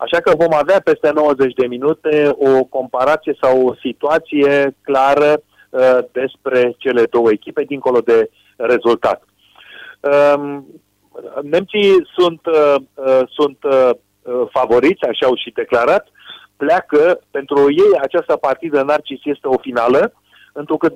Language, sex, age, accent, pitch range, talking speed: Romanian, male, 40-59, native, 135-180 Hz, 125 wpm